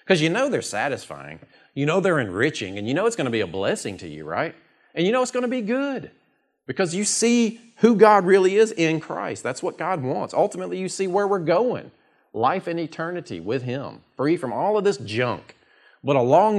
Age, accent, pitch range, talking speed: 40-59, American, 125-180 Hz, 220 wpm